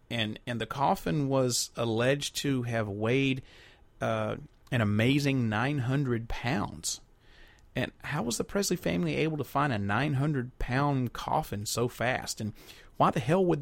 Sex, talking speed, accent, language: male, 160 wpm, American, English